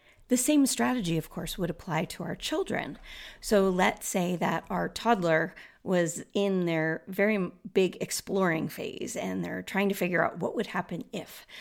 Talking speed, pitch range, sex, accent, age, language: 170 wpm, 170-215 Hz, female, American, 30-49, English